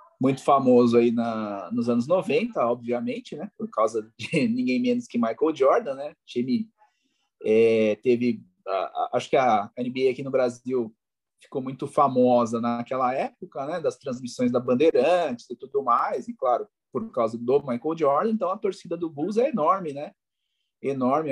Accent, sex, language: Brazilian, male, Portuguese